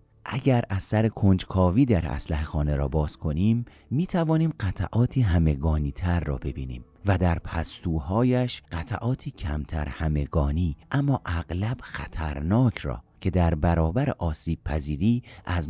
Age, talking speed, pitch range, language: 40-59, 120 wpm, 80-115 Hz, Persian